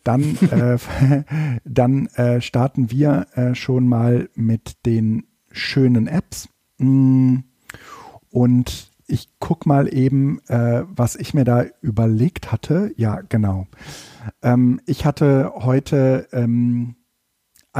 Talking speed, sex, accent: 110 wpm, male, German